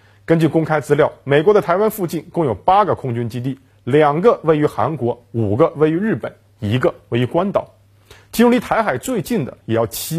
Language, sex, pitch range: Chinese, male, 110-170 Hz